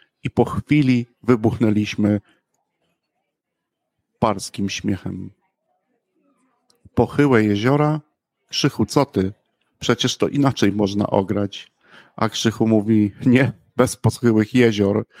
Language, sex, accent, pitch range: Polish, male, native, 105-115 Hz